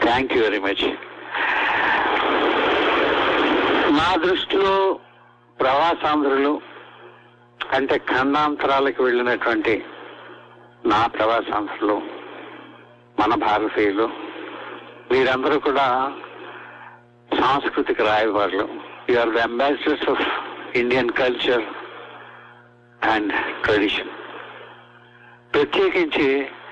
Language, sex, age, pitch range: Telugu, male, 60-79, 120-195 Hz